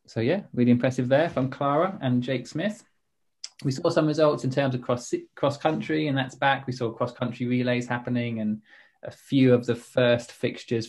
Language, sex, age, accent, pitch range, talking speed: English, male, 20-39, British, 110-130 Hz, 200 wpm